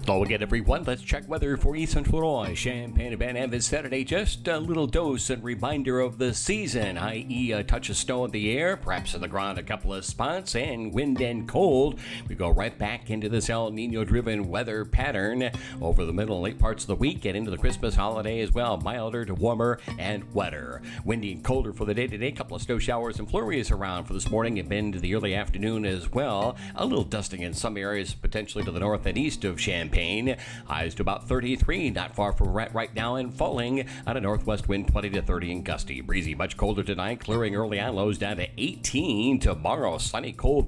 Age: 50-69